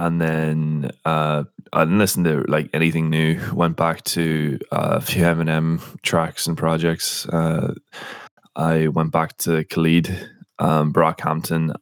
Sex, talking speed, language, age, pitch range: male, 140 wpm, English, 10-29, 80-90 Hz